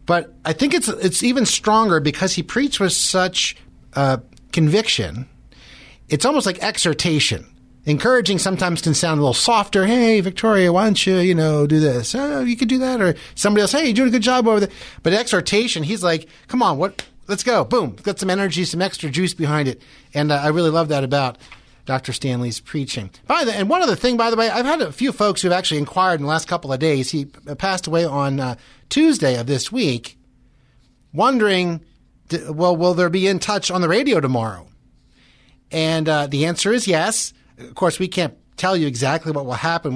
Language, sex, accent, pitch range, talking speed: English, male, American, 135-195 Hz, 205 wpm